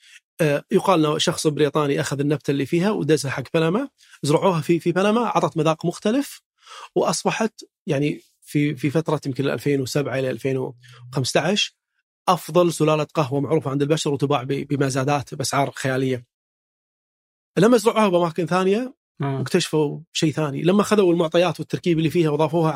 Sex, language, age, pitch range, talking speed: male, Arabic, 30-49, 145-175 Hz, 135 wpm